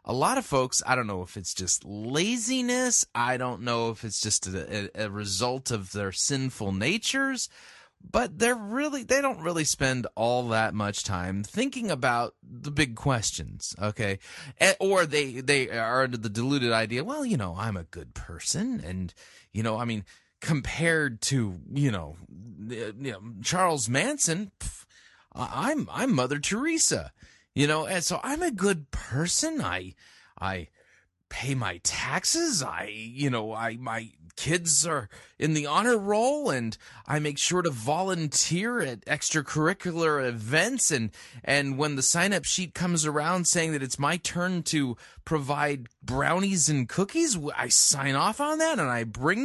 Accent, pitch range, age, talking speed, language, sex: American, 115-180 Hz, 30-49, 160 wpm, English, male